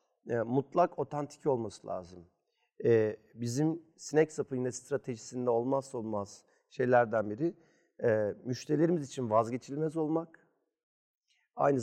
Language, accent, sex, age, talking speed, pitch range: Turkish, native, male, 40-59, 90 wpm, 120-150 Hz